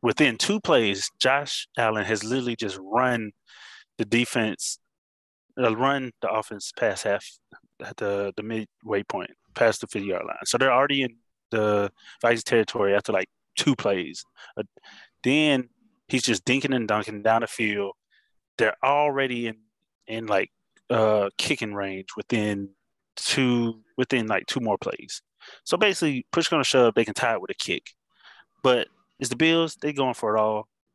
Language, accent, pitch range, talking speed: English, American, 105-130 Hz, 165 wpm